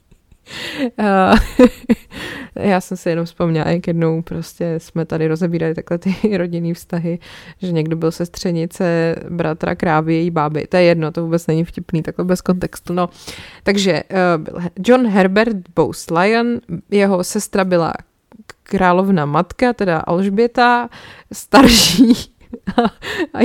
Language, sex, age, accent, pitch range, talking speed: Czech, female, 20-39, native, 165-200 Hz, 135 wpm